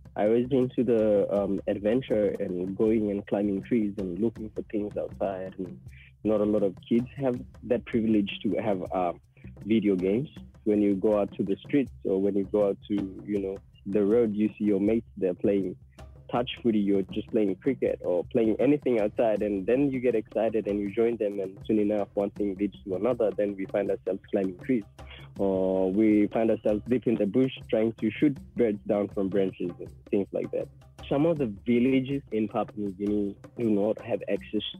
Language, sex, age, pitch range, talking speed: English, male, 20-39, 95-115 Hz, 200 wpm